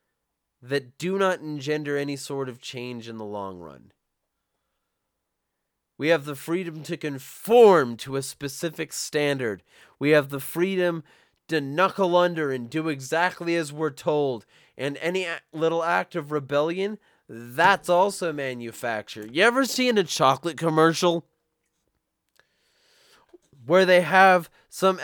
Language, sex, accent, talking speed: English, male, American, 130 wpm